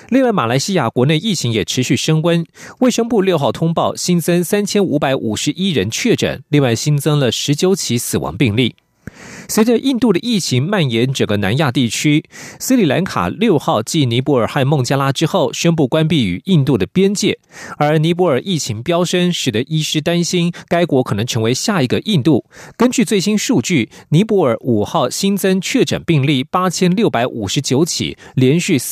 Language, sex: English, male